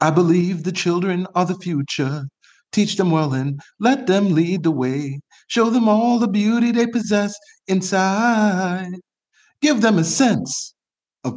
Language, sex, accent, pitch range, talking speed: English, male, American, 110-155 Hz, 155 wpm